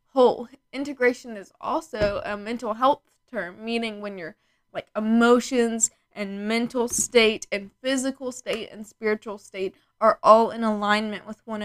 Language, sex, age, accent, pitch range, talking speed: English, female, 10-29, American, 210-245 Hz, 145 wpm